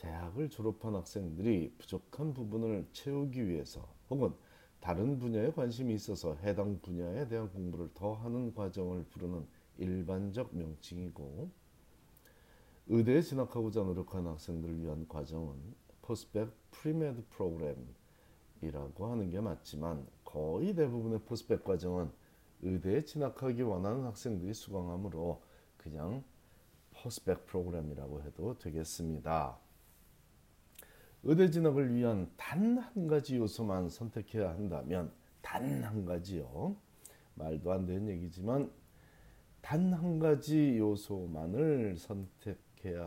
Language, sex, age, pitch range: Korean, male, 40-59, 85-120 Hz